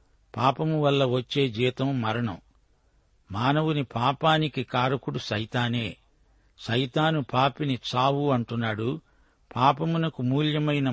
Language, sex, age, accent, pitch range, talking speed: Telugu, male, 50-69, native, 115-140 Hz, 80 wpm